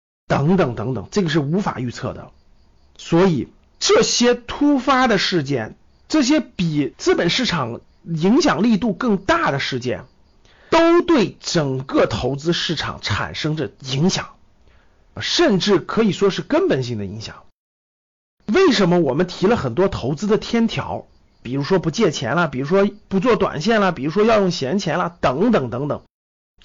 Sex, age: male, 50-69